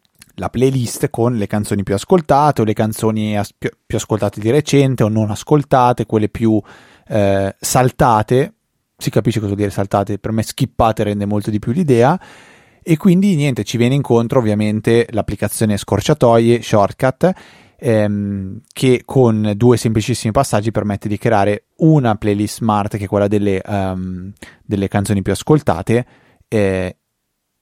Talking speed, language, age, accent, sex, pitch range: 150 wpm, Italian, 30-49, native, male, 100-125 Hz